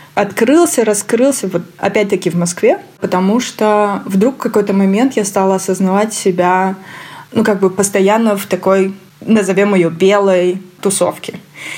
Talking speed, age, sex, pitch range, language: 135 wpm, 20-39, female, 180-210 Hz, Russian